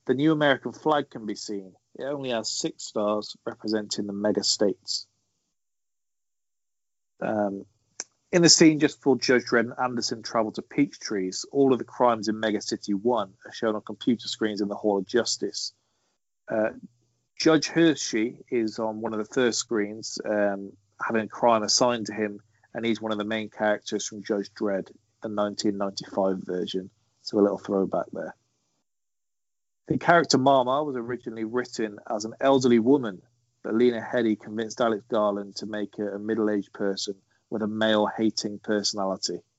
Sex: male